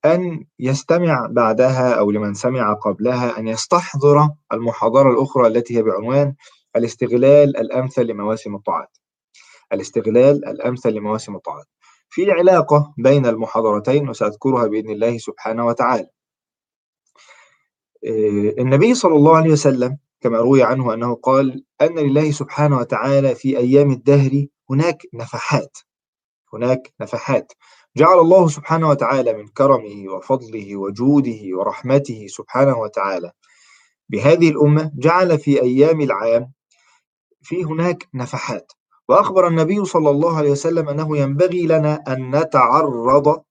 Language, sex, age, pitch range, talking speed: Arabic, male, 20-39, 120-150 Hz, 115 wpm